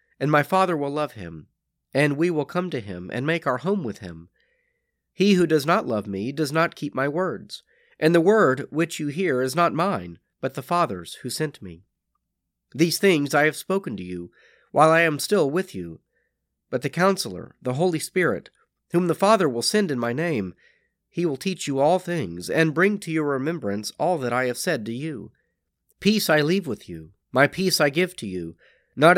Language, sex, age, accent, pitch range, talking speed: English, male, 40-59, American, 125-180 Hz, 210 wpm